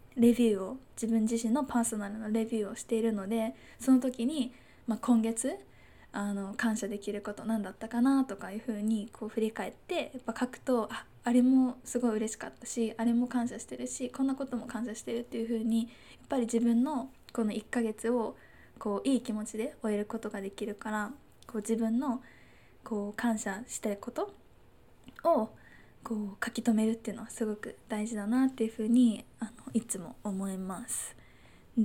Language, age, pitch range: Japanese, 10-29, 220-245 Hz